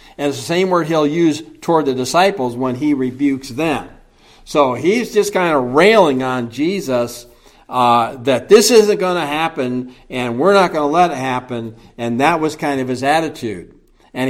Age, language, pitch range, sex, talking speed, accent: 60-79, English, 130-185 Hz, male, 190 wpm, American